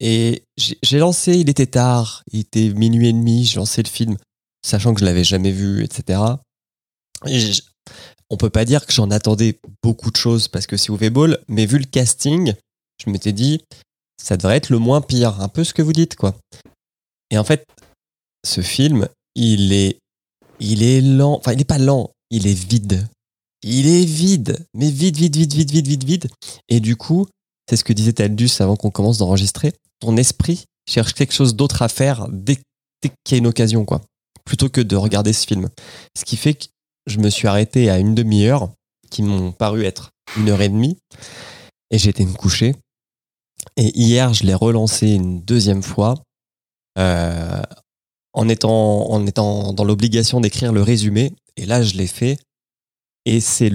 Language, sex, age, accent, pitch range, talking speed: French, male, 20-39, French, 105-130 Hz, 190 wpm